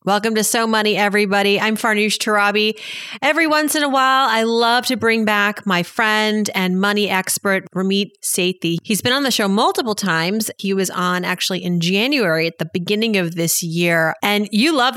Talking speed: 190 wpm